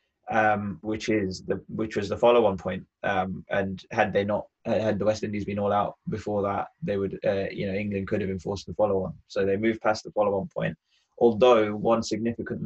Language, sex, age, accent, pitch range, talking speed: English, male, 20-39, British, 100-115 Hz, 210 wpm